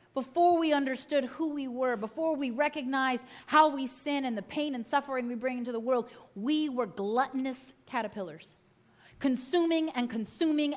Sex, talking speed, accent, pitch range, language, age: female, 160 wpm, American, 210-280 Hz, English, 30-49